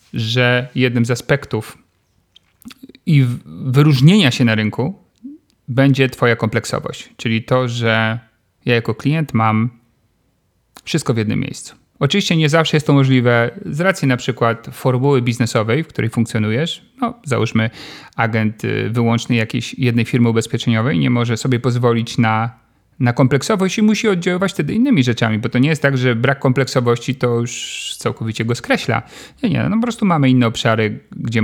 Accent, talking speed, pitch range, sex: native, 155 wpm, 115-150 Hz, male